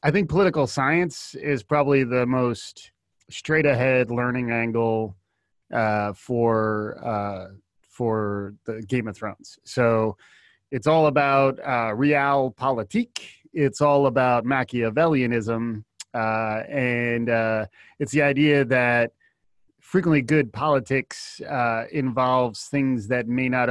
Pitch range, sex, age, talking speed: 110-140 Hz, male, 30-49, 115 wpm